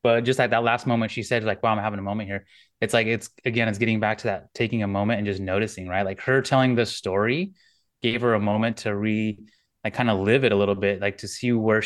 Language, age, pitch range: English, 20-39, 105-120 Hz